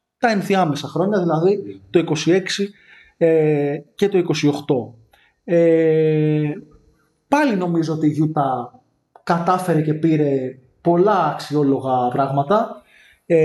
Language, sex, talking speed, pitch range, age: Greek, male, 85 wpm, 150-190 Hz, 20-39